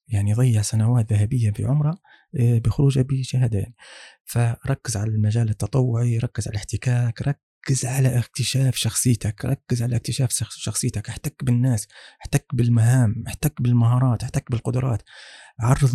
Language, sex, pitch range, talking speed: Arabic, male, 115-135 Hz, 120 wpm